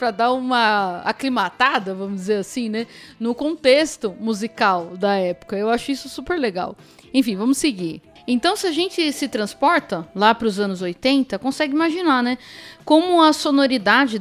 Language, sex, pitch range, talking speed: Portuguese, female, 205-275 Hz, 160 wpm